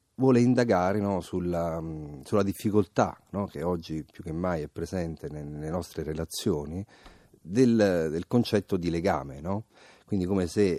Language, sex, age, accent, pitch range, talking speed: Italian, male, 40-59, native, 80-100 Hz, 145 wpm